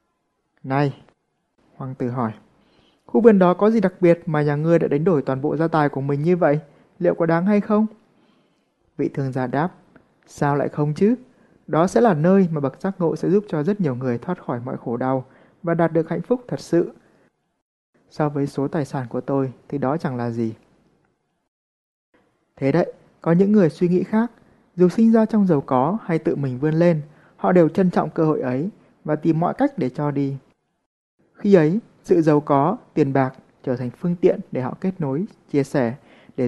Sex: male